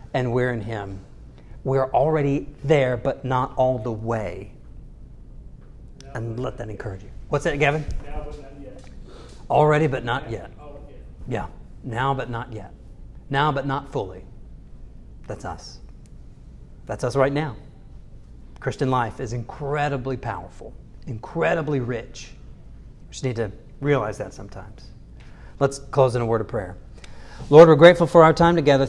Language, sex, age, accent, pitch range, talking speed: English, male, 40-59, American, 115-145 Hz, 140 wpm